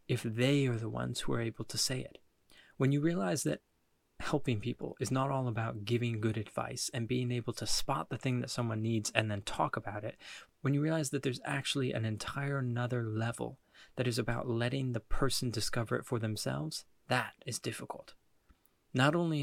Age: 20-39